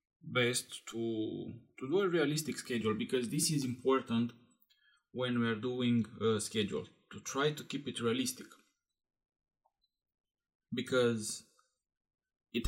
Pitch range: 115-130 Hz